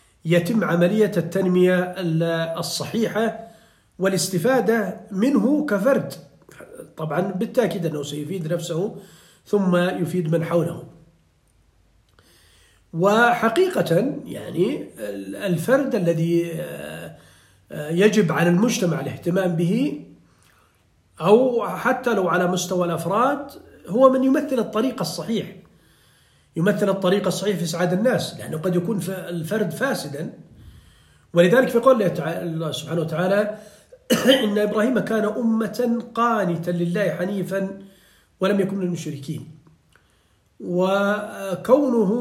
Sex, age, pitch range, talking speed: male, 40-59, 170-225 Hz, 90 wpm